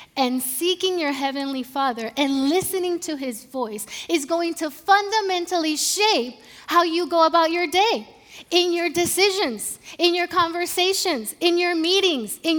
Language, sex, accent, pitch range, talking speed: English, female, American, 250-350 Hz, 150 wpm